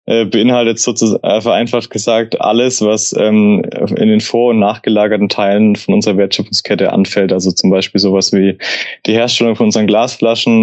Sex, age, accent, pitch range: male, 20-39, German, 105-120 Hz